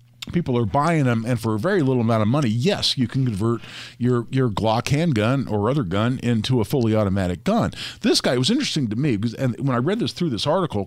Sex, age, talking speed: male, 50-69, 245 wpm